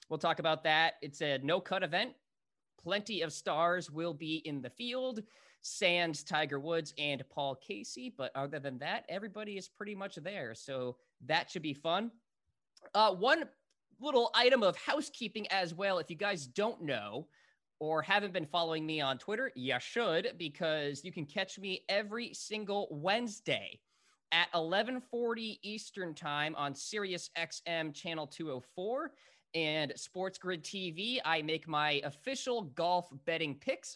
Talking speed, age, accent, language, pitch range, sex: 150 wpm, 20-39, American, English, 145-205 Hz, male